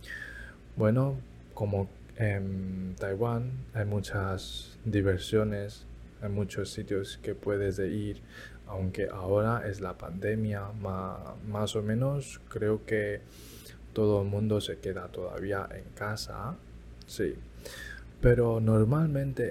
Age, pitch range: 20-39, 95-110 Hz